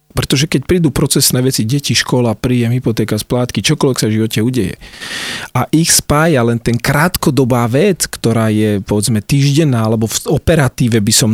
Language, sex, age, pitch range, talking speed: Slovak, male, 40-59, 110-145 Hz, 165 wpm